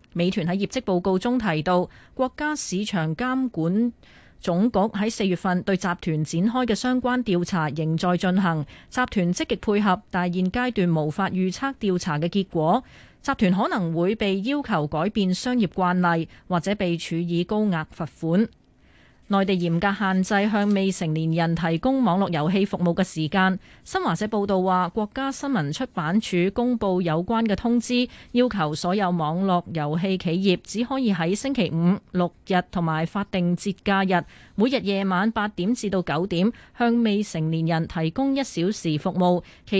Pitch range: 170-215 Hz